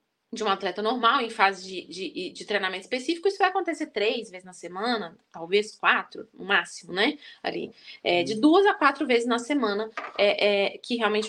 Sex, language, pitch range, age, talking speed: female, Portuguese, 220-295 Hz, 10-29, 190 wpm